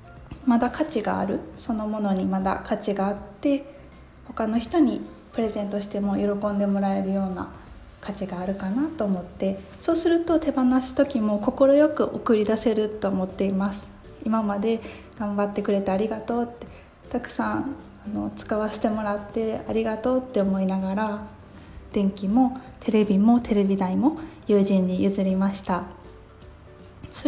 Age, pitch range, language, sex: 20-39, 195-255 Hz, Japanese, female